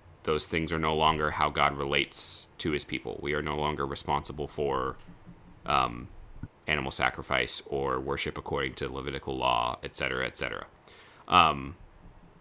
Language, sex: English, male